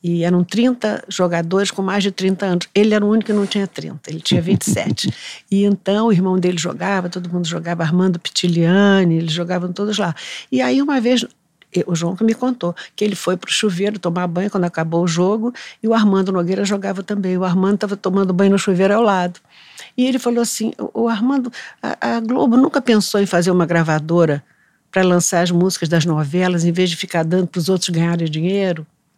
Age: 60-79